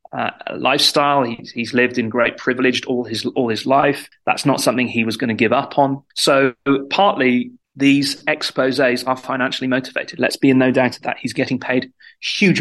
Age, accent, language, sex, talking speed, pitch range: 30-49, British, English, male, 195 wpm, 125-145 Hz